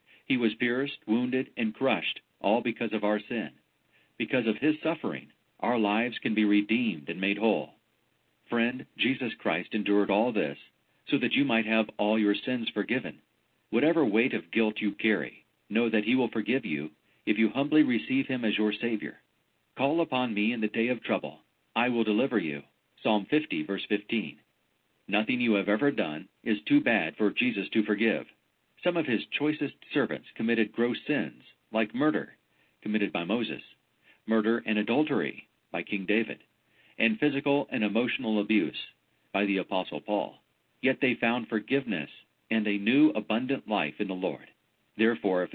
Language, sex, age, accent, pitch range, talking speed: English, male, 50-69, American, 105-120 Hz, 170 wpm